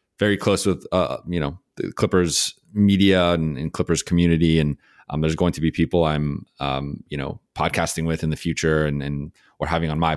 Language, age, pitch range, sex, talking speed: English, 30-49, 75-90 Hz, male, 205 wpm